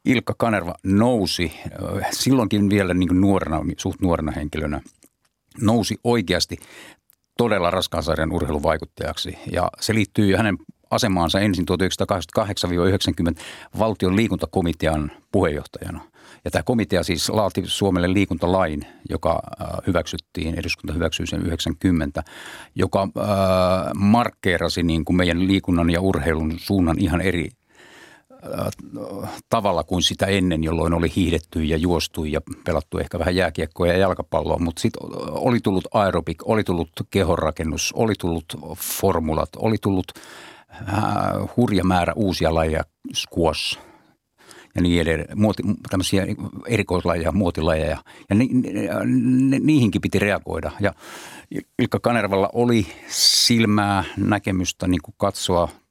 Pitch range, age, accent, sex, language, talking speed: 85-100 Hz, 50-69, native, male, Finnish, 110 wpm